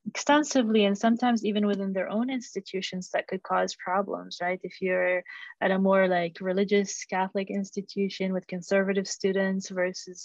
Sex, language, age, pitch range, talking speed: female, English, 20-39, 190-220 Hz, 150 wpm